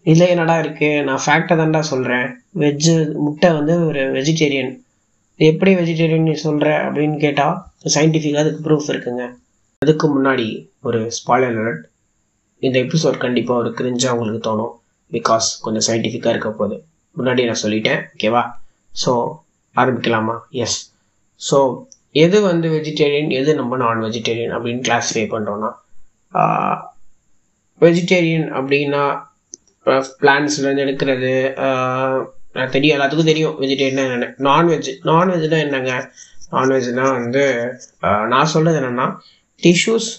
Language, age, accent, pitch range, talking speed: Tamil, 20-39, native, 125-155 Hz, 115 wpm